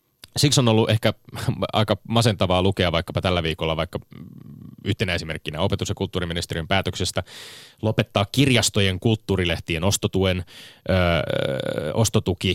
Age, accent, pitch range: 20-39, native, 90-110 Hz